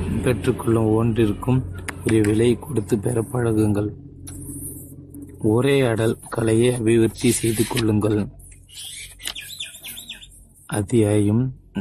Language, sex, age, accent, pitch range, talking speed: Tamil, male, 30-49, native, 105-120 Hz, 60 wpm